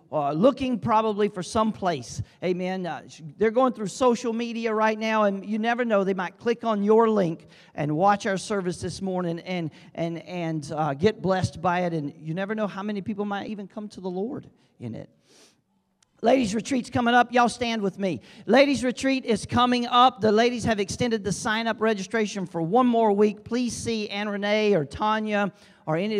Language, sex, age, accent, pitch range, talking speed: English, male, 40-59, American, 165-220 Hz, 200 wpm